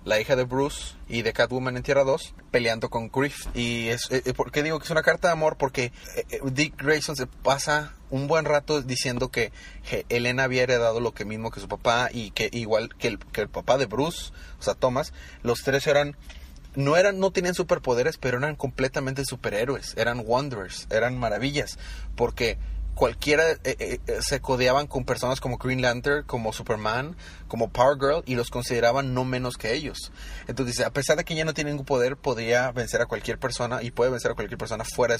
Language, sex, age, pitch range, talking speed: Spanish, male, 30-49, 115-155 Hz, 200 wpm